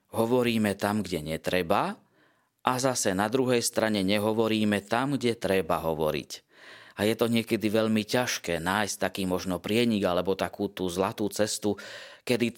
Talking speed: 145 wpm